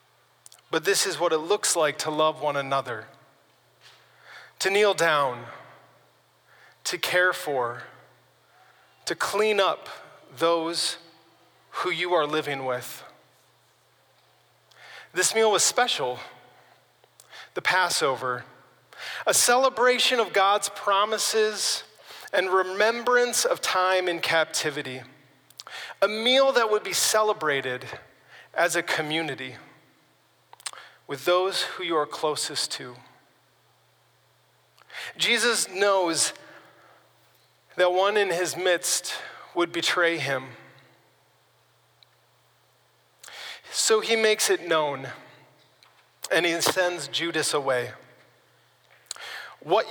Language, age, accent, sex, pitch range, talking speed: English, 30-49, American, male, 140-205 Hz, 95 wpm